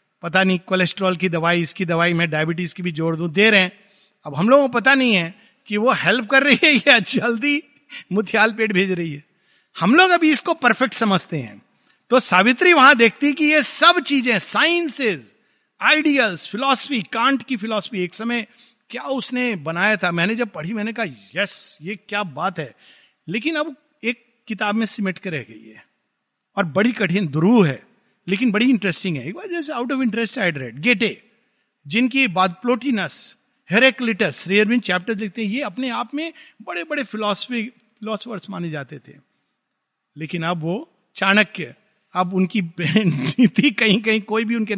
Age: 50-69